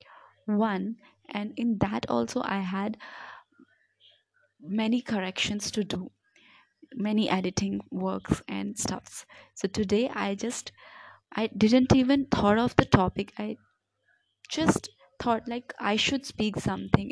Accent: Indian